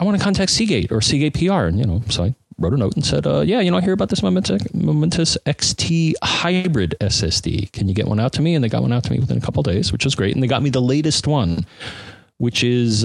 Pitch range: 100-130 Hz